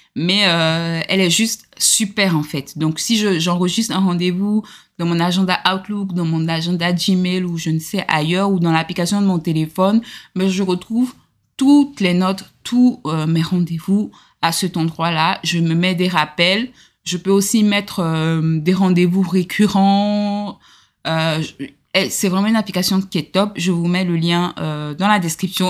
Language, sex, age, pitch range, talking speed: French, female, 20-39, 170-210 Hz, 175 wpm